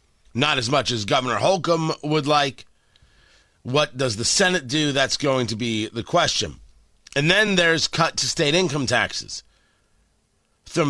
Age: 30-49